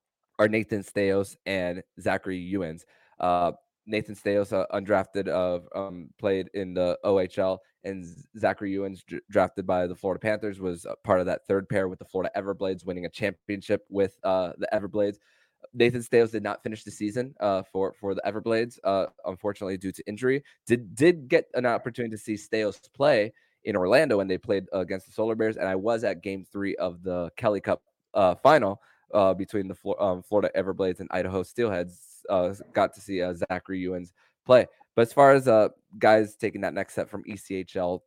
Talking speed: 190 wpm